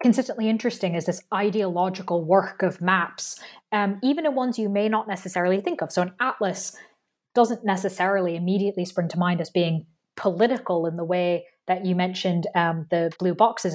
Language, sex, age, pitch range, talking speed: English, female, 20-39, 175-220 Hz, 175 wpm